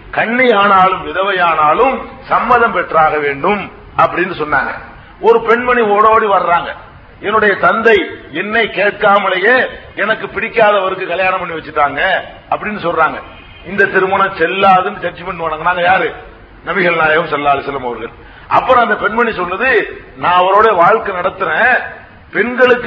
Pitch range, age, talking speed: 180-225 Hz, 50-69, 115 wpm